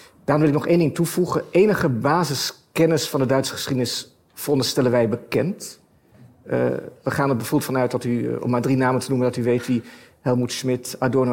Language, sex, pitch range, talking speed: Dutch, male, 130-155 Hz, 200 wpm